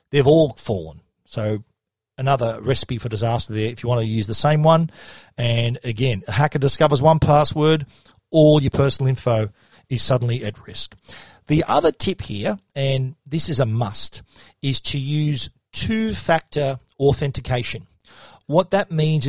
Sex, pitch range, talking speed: male, 115-150 Hz, 150 wpm